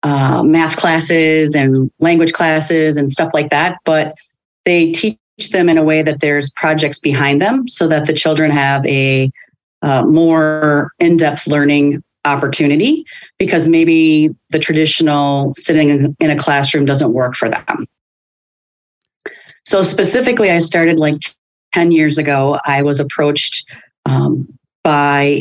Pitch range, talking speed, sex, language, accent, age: 145-160 Hz, 135 wpm, female, English, American, 30-49